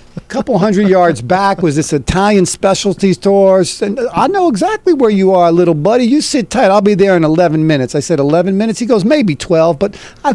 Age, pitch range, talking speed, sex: 50-69, 145-190 Hz, 220 wpm, male